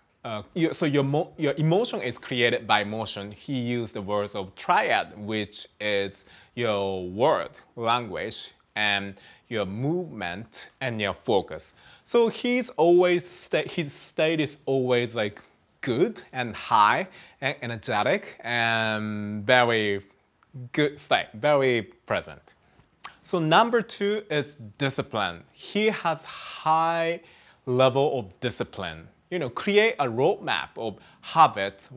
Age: 20-39